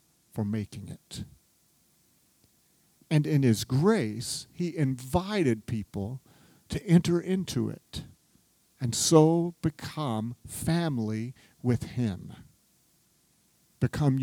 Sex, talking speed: male, 85 wpm